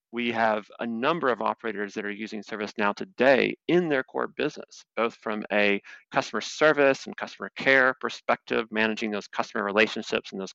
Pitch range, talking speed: 100-115 Hz, 170 wpm